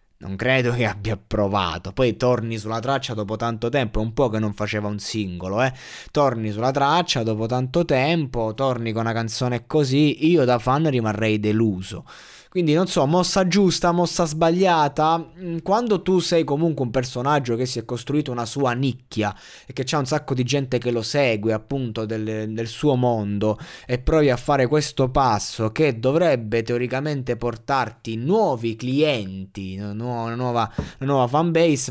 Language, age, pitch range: Italian, 20-39, 110-140 Hz